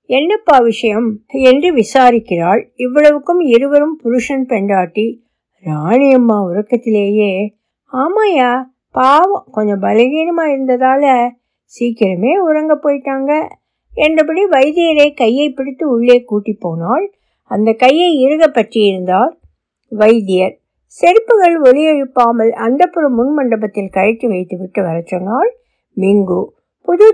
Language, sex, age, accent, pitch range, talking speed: Tamil, female, 60-79, native, 215-310 Hz, 90 wpm